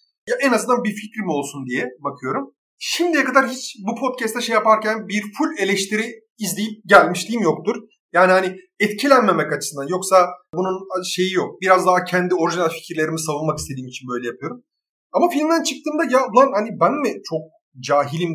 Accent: native